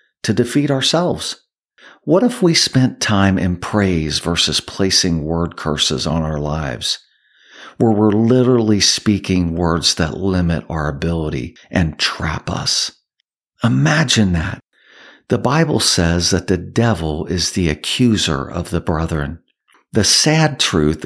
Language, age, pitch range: English, 50-69, 80-105 Hz